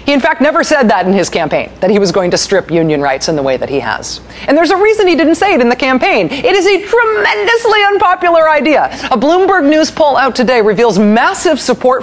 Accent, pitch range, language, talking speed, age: American, 215-330 Hz, English, 245 wpm, 40-59